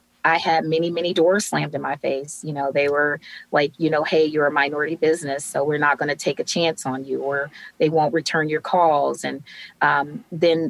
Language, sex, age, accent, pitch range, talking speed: English, female, 20-39, American, 140-160 Hz, 225 wpm